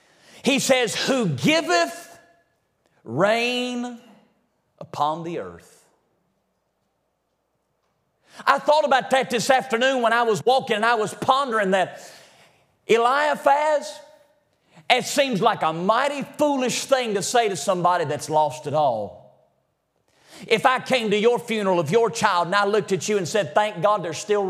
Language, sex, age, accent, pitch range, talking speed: English, male, 40-59, American, 185-265 Hz, 145 wpm